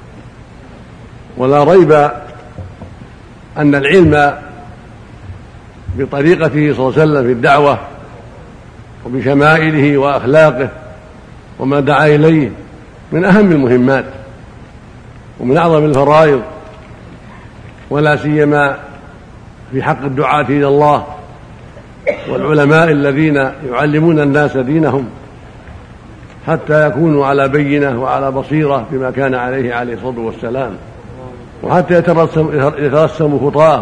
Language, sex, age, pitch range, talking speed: Arabic, male, 60-79, 130-150 Hz, 90 wpm